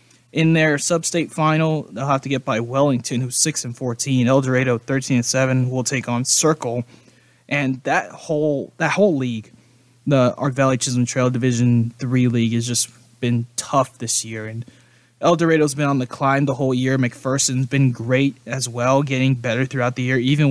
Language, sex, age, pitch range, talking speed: English, male, 20-39, 120-150 Hz, 185 wpm